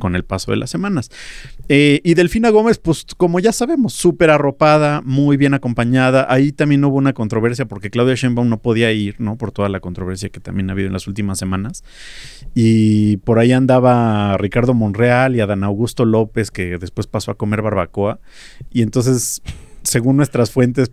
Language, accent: Spanish, Mexican